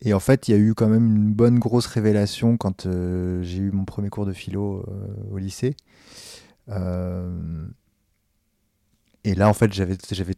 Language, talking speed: French, 185 wpm